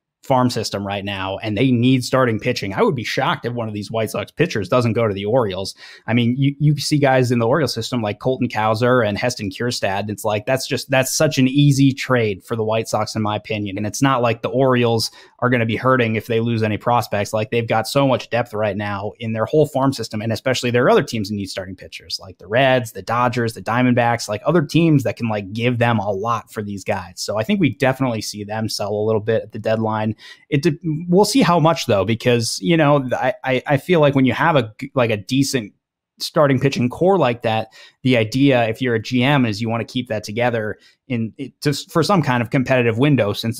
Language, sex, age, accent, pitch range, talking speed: English, male, 20-39, American, 110-130 Hz, 245 wpm